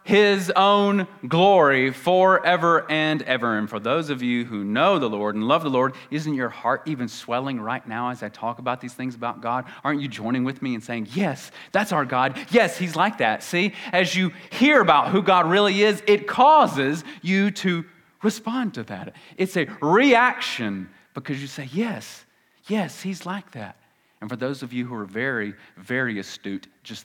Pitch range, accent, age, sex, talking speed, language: 110-185 Hz, American, 30-49, male, 195 wpm, English